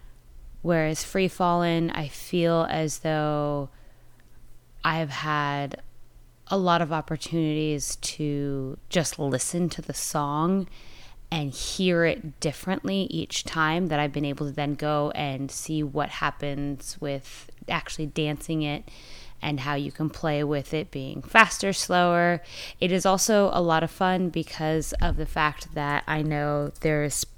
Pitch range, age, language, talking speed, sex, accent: 145-165 Hz, 20-39, English, 140 wpm, female, American